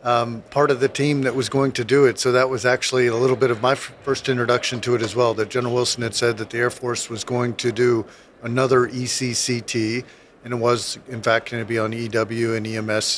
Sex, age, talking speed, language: male, 50-69, 245 wpm, English